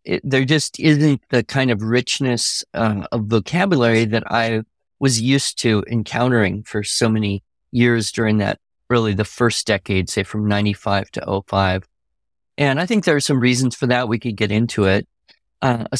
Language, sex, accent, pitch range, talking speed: English, male, American, 110-135 Hz, 180 wpm